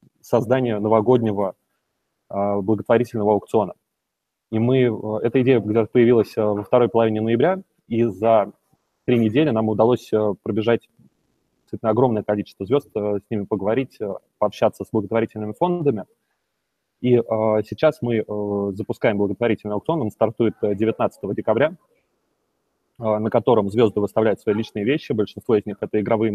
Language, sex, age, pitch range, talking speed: Russian, male, 20-39, 105-115 Hz, 115 wpm